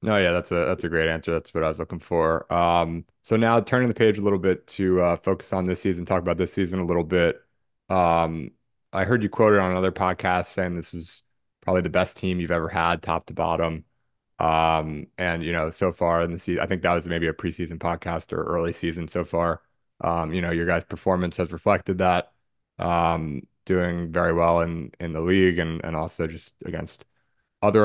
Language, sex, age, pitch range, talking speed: English, male, 20-39, 85-95 Hz, 220 wpm